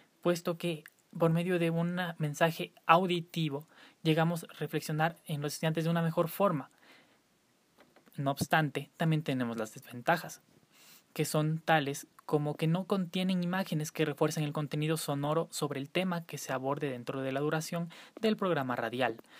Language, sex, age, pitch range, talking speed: Spanish, male, 20-39, 145-175 Hz, 155 wpm